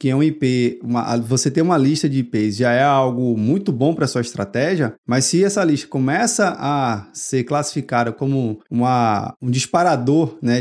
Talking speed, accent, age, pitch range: 185 wpm, Brazilian, 20-39, 130-170 Hz